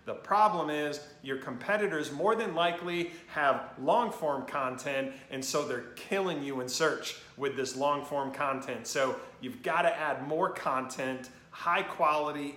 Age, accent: 40-59, American